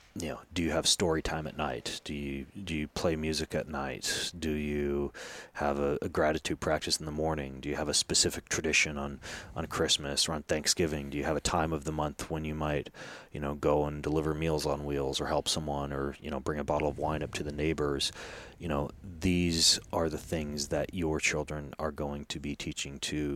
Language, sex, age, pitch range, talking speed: English, male, 30-49, 70-80 Hz, 225 wpm